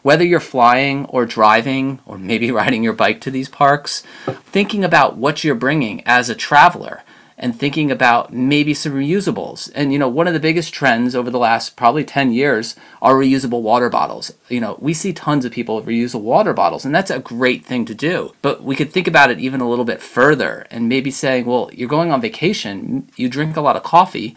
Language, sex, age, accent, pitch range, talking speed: English, male, 30-49, American, 125-160 Hz, 215 wpm